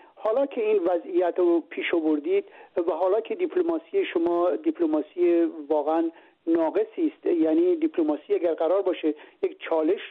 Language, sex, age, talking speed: Persian, male, 50-69, 135 wpm